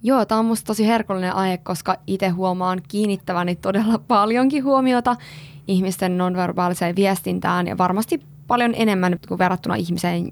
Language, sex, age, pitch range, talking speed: Finnish, female, 20-39, 165-190 Hz, 140 wpm